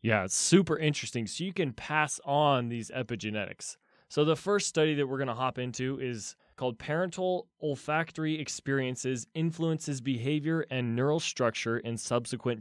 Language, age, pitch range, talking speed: English, 20-39, 120-150 Hz, 155 wpm